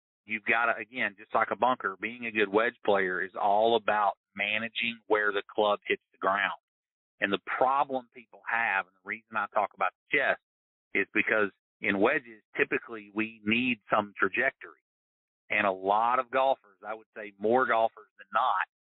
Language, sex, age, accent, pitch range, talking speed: English, male, 50-69, American, 95-115 Hz, 180 wpm